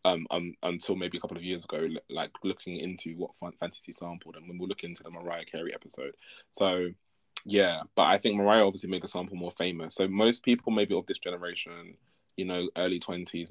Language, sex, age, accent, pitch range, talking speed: English, male, 20-39, British, 85-100 Hz, 210 wpm